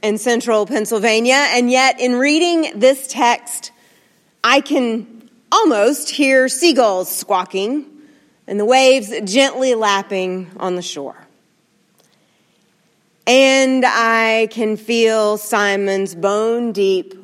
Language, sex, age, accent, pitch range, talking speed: English, female, 40-59, American, 190-245 Hz, 100 wpm